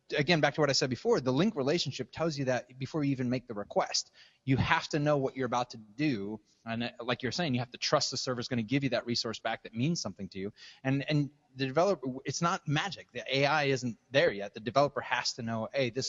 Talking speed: 255 wpm